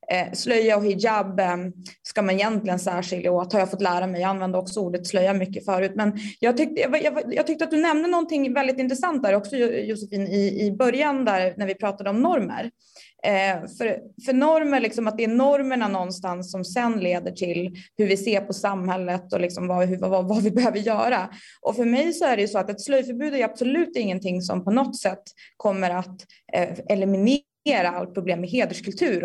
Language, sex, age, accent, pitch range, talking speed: Swedish, female, 20-39, native, 190-245 Hz, 185 wpm